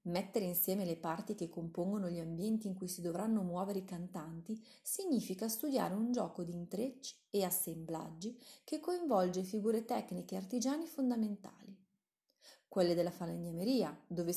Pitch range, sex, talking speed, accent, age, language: 180-265 Hz, female, 140 wpm, native, 30-49, Italian